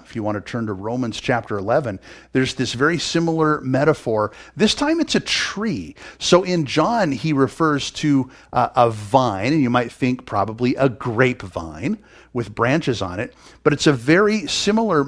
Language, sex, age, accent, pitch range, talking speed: English, male, 50-69, American, 120-155 Hz, 175 wpm